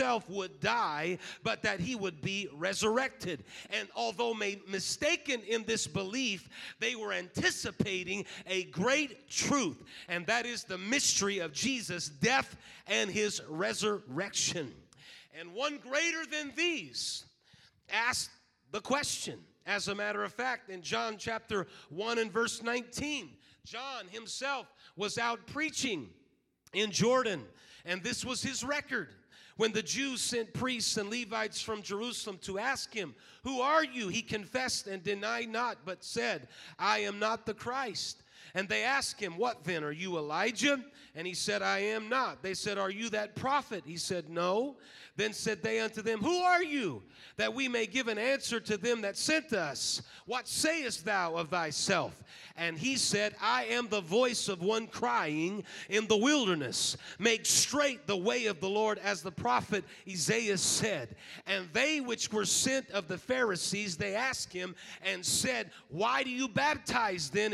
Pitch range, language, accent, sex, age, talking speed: 195-240 Hz, English, American, male, 40-59, 160 wpm